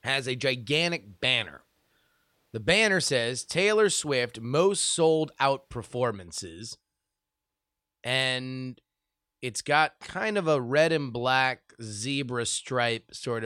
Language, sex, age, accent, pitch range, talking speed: English, male, 30-49, American, 120-170 Hz, 105 wpm